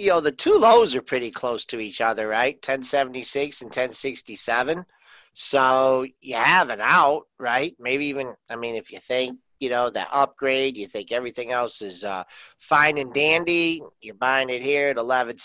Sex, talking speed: male, 195 wpm